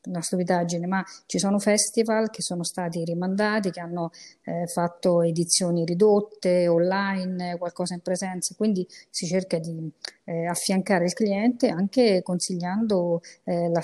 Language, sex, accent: Italian, female, native